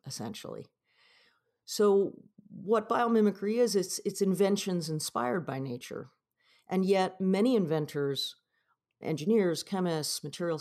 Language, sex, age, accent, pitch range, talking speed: English, female, 50-69, American, 140-190 Hz, 100 wpm